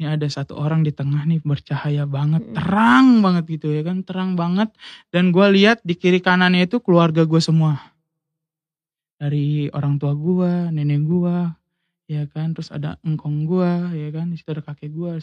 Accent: native